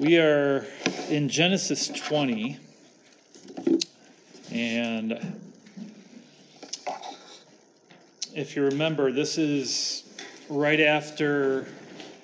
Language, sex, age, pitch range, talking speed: English, male, 40-59, 115-150 Hz, 65 wpm